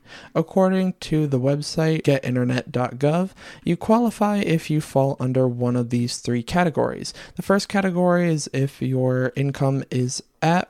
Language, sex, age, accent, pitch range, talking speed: English, male, 20-39, American, 130-170 Hz, 140 wpm